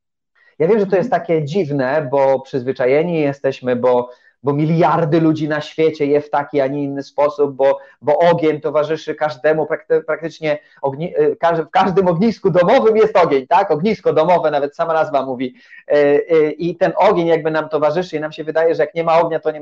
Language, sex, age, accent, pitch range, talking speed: Polish, male, 30-49, native, 140-175 Hz, 180 wpm